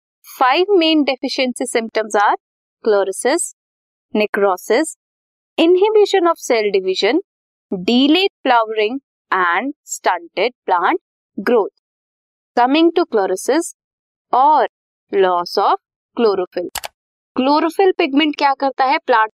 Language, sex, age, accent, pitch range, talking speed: Hindi, female, 20-39, native, 220-355 Hz, 75 wpm